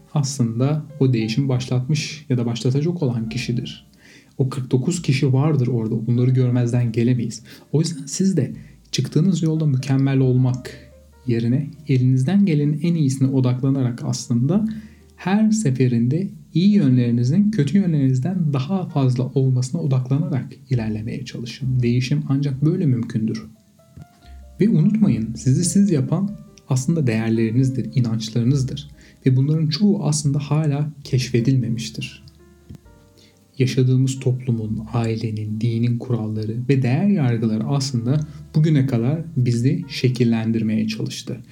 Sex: male